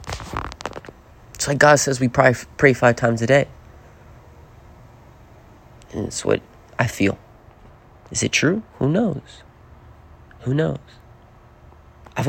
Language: English